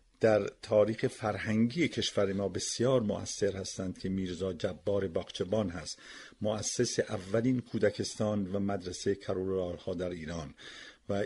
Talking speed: 115 wpm